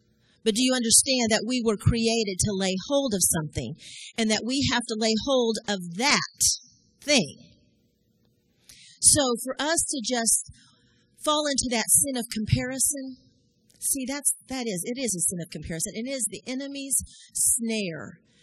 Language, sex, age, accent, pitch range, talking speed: English, female, 40-59, American, 200-255 Hz, 160 wpm